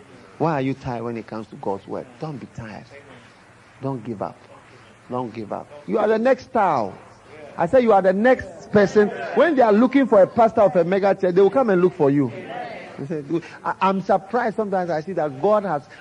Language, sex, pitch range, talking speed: English, male, 125-200 Hz, 215 wpm